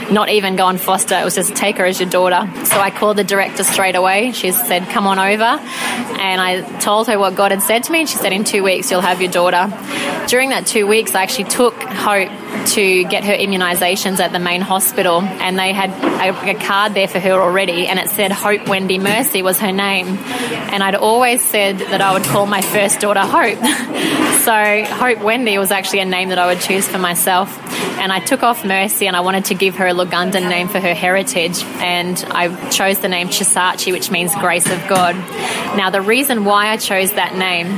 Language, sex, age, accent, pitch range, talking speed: English, female, 20-39, Australian, 185-215 Hz, 220 wpm